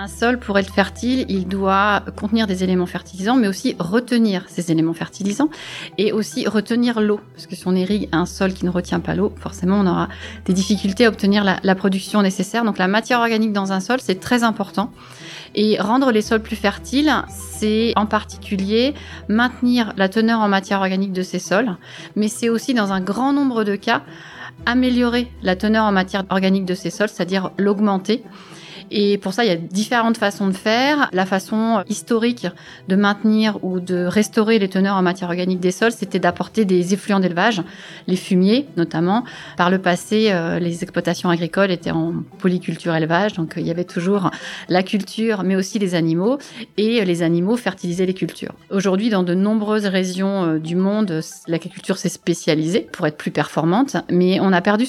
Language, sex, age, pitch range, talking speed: English, female, 30-49, 180-220 Hz, 185 wpm